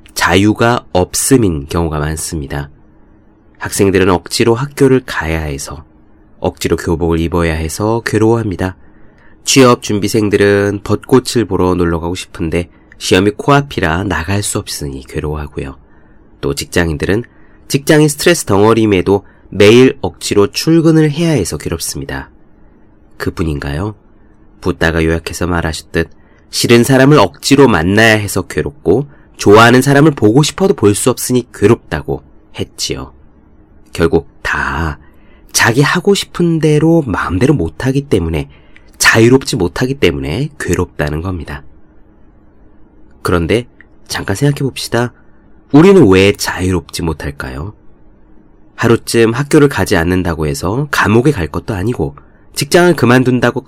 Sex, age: male, 30-49